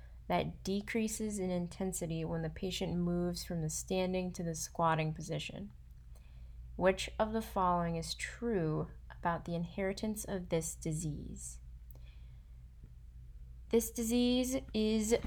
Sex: female